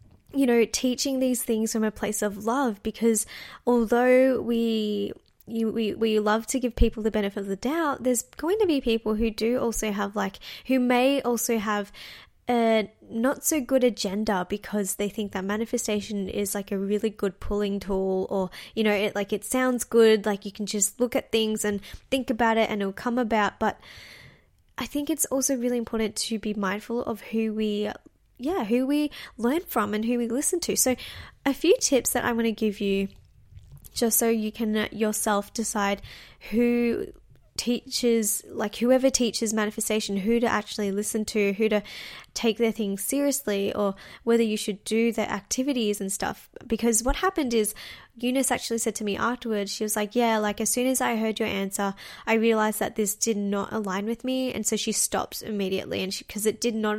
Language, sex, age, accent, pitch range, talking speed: English, female, 10-29, Australian, 205-240 Hz, 195 wpm